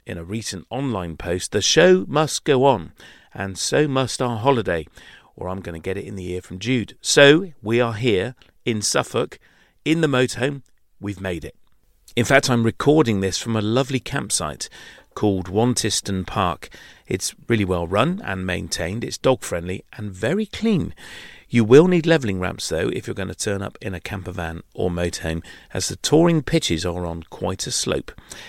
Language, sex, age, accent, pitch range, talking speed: English, male, 40-59, British, 90-130 Hz, 185 wpm